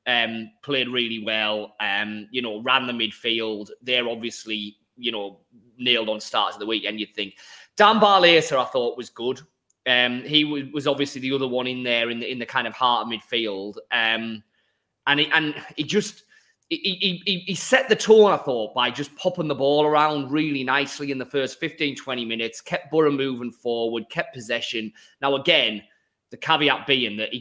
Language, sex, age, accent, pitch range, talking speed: English, male, 20-39, British, 115-180 Hz, 190 wpm